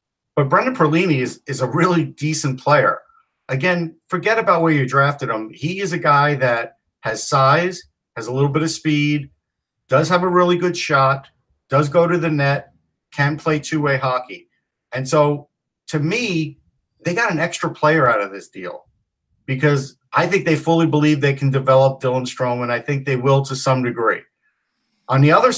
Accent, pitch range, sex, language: American, 135-165 Hz, male, English